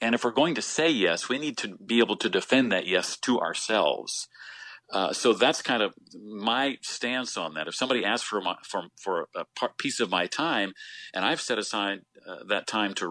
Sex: male